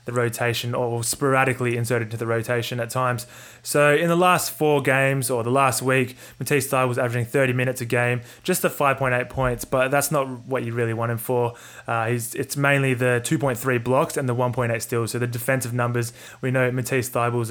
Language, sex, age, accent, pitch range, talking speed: English, male, 20-39, Australian, 120-140 Hz, 200 wpm